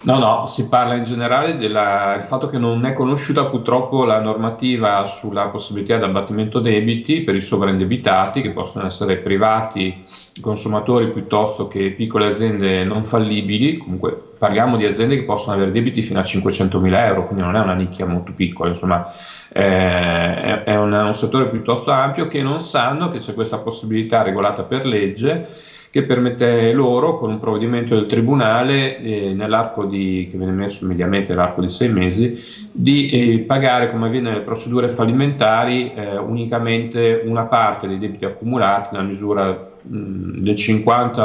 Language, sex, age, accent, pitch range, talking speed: Italian, male, 40-59, native, 100-120 Hz, 165 wpm